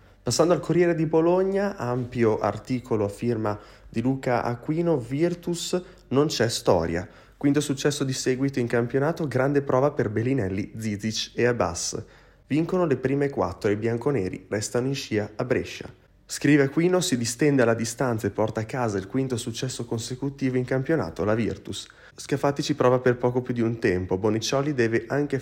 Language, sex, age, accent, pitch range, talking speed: Italian, male, 30-49, native, 110-135 Hz, 170 wpm